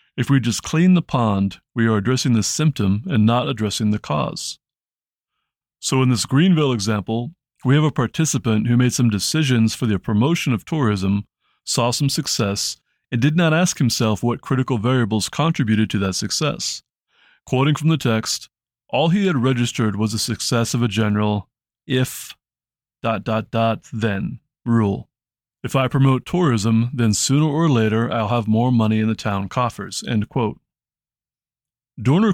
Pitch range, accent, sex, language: 110-135 Hz, American, male, English